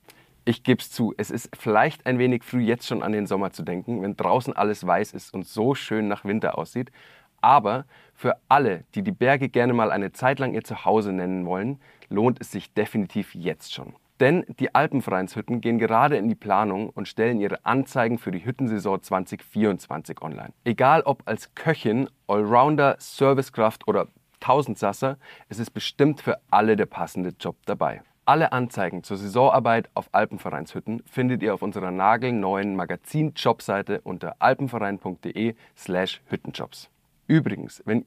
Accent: German